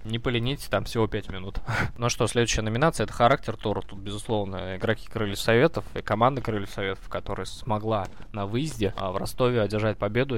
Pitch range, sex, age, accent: 100-120 Hz, male, 20-39, native